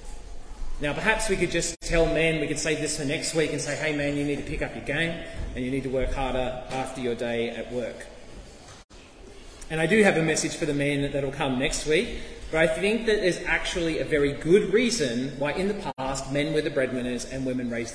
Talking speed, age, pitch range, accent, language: 235 wpm, 30-49, 140-175 Hz, Australian, English